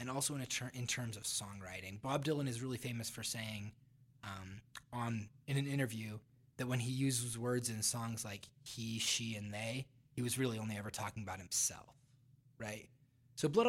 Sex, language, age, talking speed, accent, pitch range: male, English, 20-39, 195 wpm, American, 115-135 Hz